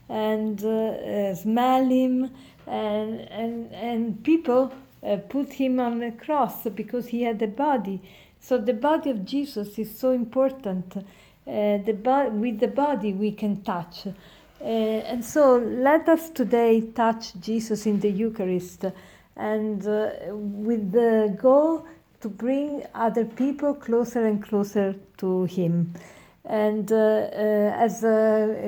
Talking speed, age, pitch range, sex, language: 140 wpm, 50-69, 200-245 Hz, female, English